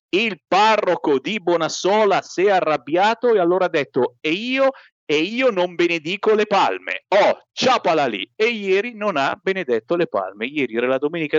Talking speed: 175 wpm